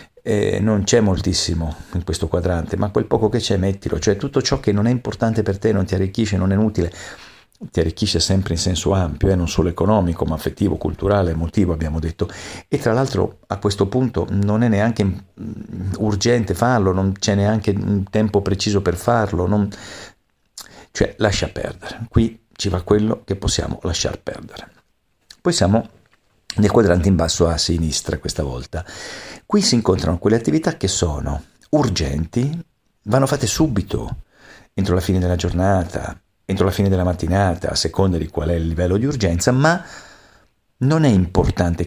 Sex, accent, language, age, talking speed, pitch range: male, native, Italian, 50-69, 170 wpm, 90-110 Hz